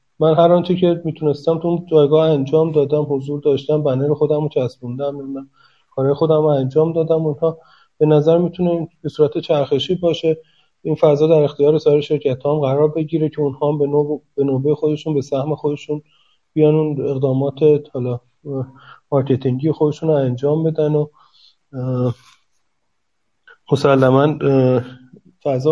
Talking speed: 140 wpm